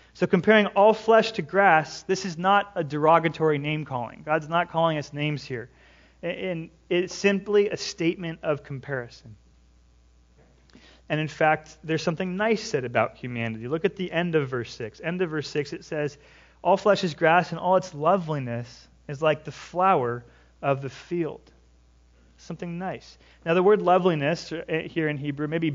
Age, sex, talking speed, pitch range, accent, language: 30-49, male, 165 wpm, 130-175 Hz, American, English